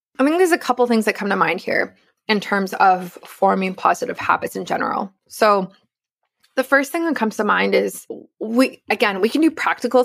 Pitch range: 190-235 Hz